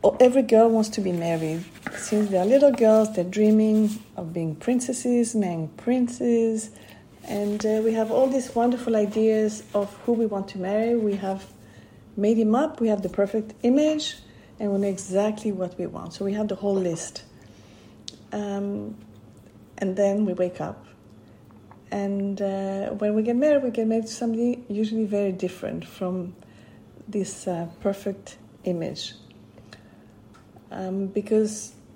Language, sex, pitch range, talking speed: English, female, 170-220 Hz, 150 wpm